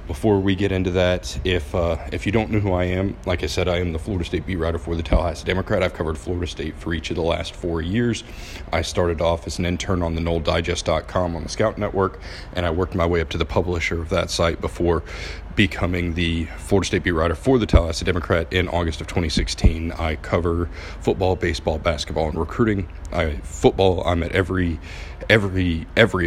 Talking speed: 215 wpm